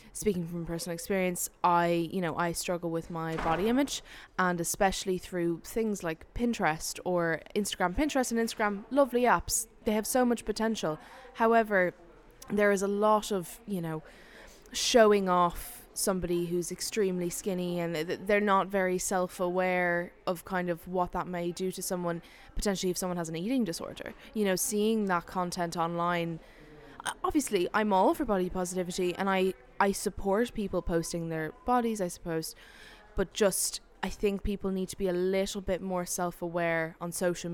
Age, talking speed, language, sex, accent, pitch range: 20-39, 170 wpm, English, female, Irish, 170-200 Hz